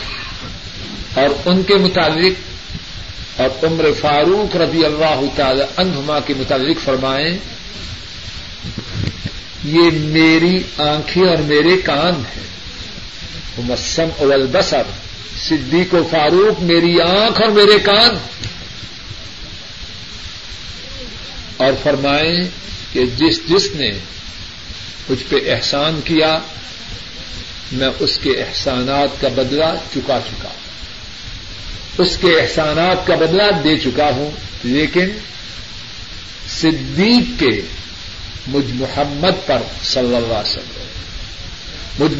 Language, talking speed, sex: Urdu, 95 wpm, male